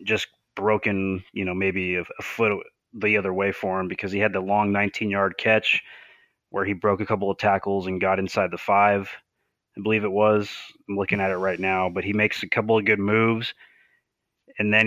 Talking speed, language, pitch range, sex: 215 wpm, English, 95-110 Hz, male